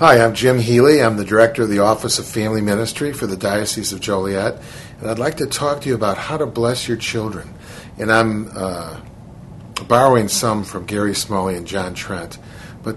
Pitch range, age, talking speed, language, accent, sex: 95-115 Hz, 50-69, 200 wpm, English, American, male